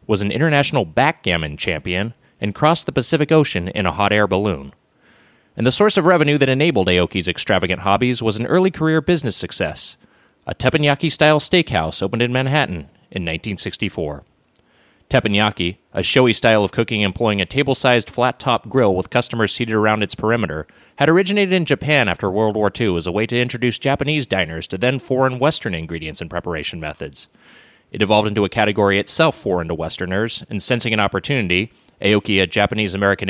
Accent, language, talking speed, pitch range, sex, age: American, English, 170 wpm, 95-130 Hz, male, 30-49